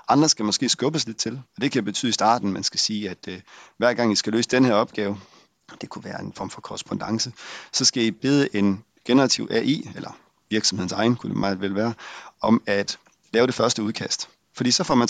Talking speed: 230 wpm